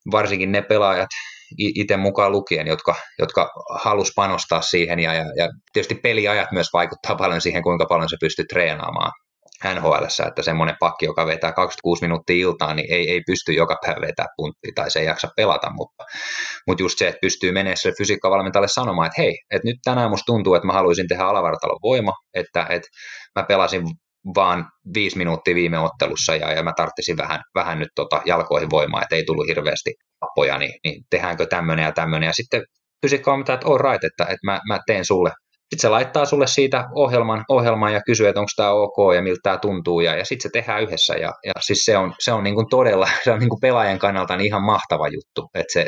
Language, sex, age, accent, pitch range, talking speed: Finnish, male, 20-39, native, 85-110 Hz, 205 wpm